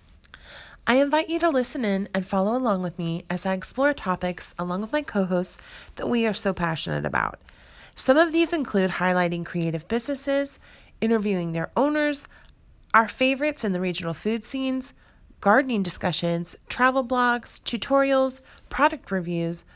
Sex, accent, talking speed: female, American, 150 wpm